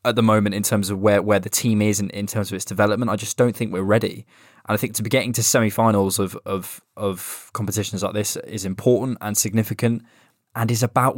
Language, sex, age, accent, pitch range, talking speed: English, male, 20-39, British, 100-125 Hz, 235 wpm